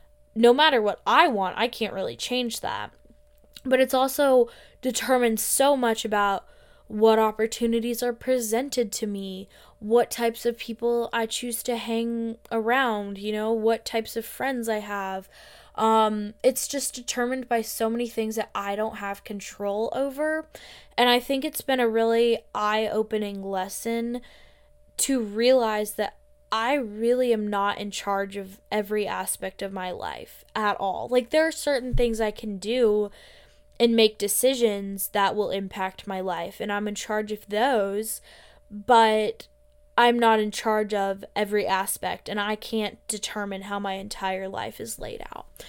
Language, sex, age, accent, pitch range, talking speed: English, female, 10-29, American, 205-245 Hz, 160 wpm